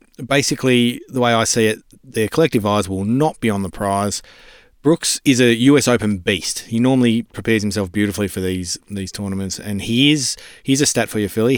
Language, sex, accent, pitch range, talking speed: English, male, Australian, 105-120 Hz, 190 wpm